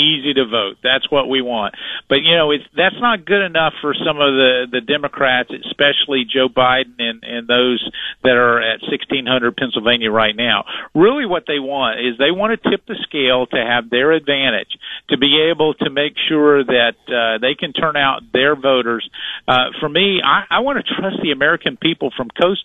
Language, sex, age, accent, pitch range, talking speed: English, male, 50-69, American, 125-155 Hz, 200 wpm